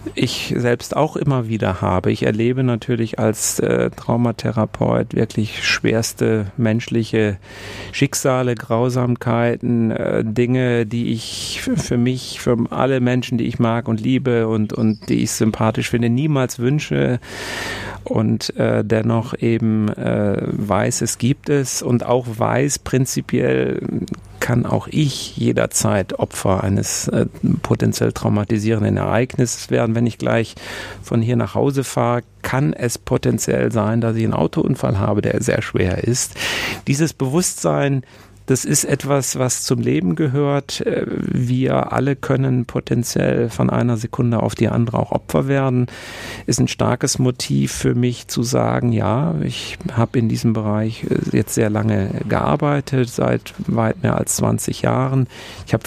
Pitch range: 110-130 Hz